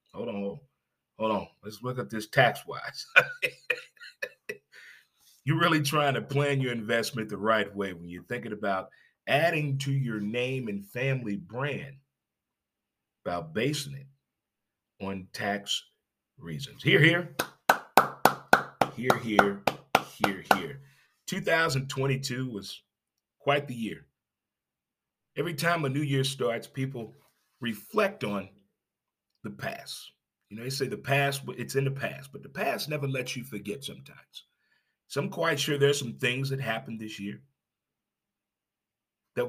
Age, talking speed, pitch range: 30-49, 135 wpm, 110-140 Hz